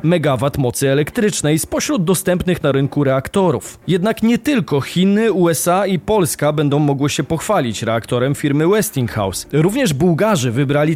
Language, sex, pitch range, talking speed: Polish, male, 140-195 Hz, 135 wpm